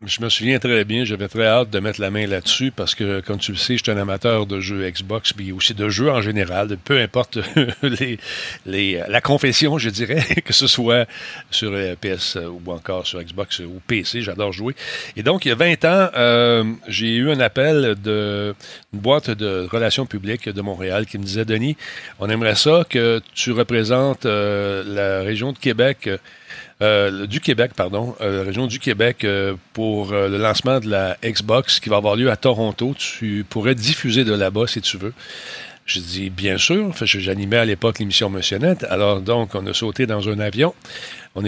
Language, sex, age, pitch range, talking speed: French, male, 40-59, 100-120 Hz, 205 wpm